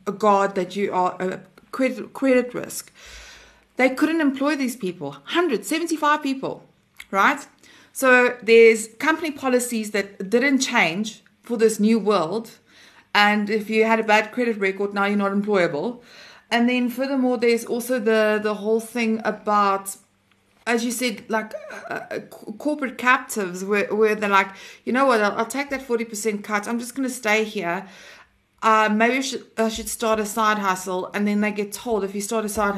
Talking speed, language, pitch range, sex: 180 wpm, English, 205-250 Hz, female